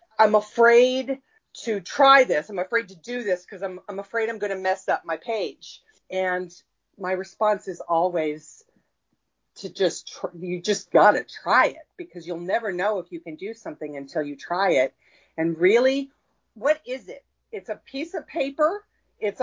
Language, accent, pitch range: English, American, 180-265 Hz